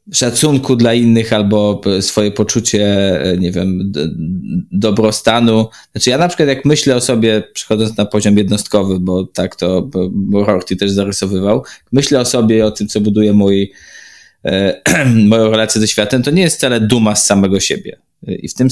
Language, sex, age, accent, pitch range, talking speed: Polish, male, 20-39, native, 100-125 Hz, 165 wpm